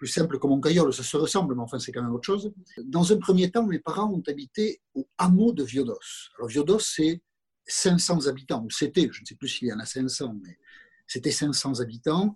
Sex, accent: male, French